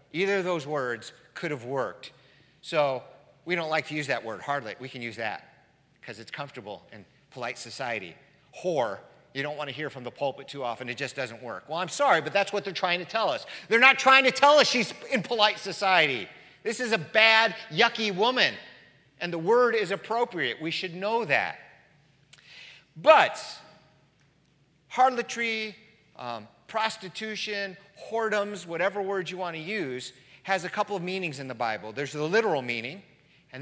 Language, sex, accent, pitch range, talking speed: English, male, American, 140-200 Hz, 180 wpm